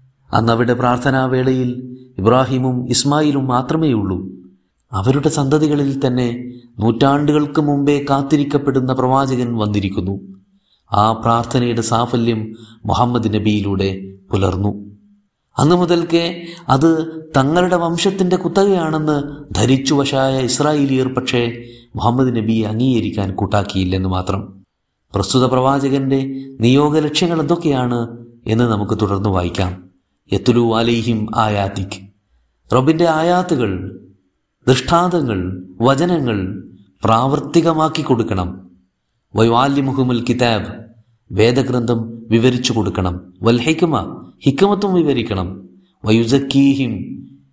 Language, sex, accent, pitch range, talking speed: Malayalam, male, native, 105-140 Hz, 75 wpm